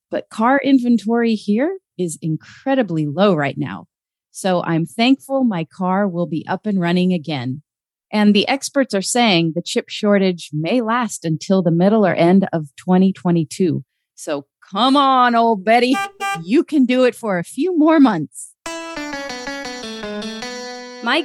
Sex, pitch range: female, 185-245 Hz